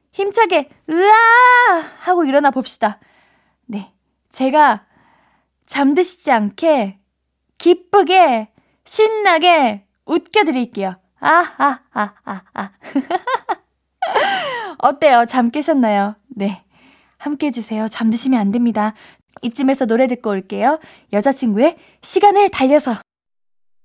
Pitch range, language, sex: 220-330 Hz, Korean, female